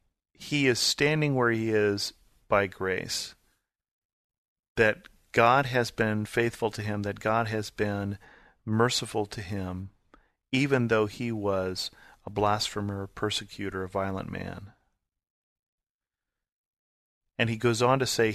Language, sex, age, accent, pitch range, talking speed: English, male, 40-59, American, 100-120 Hz, 130 wpm